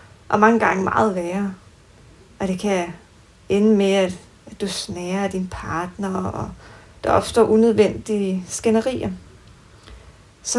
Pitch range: 185-235 Hz